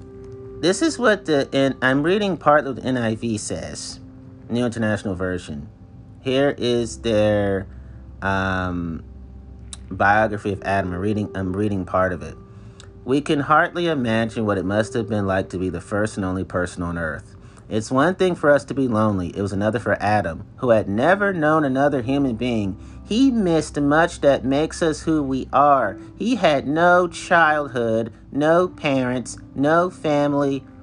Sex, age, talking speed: male, 30-49, 165 wpm